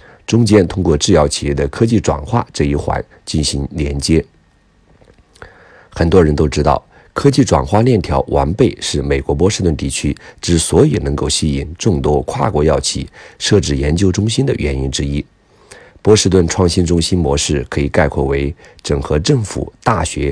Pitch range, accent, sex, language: 70-95 Hz, native, male, Chinese